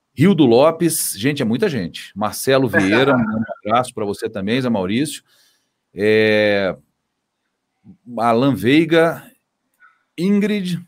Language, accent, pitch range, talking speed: Portuguese, Brazilian, 110-160 Hz, 110 wpm